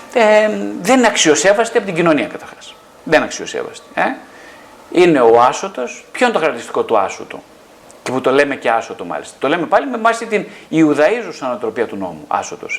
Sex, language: male, Greek